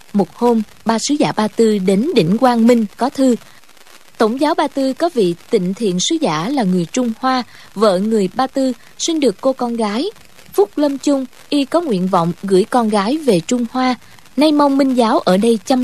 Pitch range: 200-265 Hz